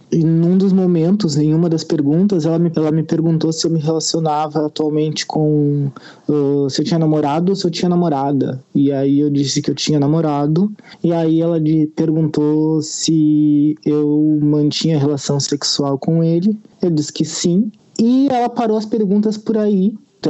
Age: 20-39